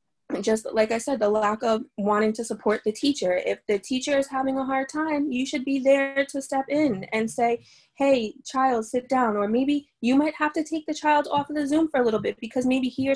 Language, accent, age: English, American, 20-39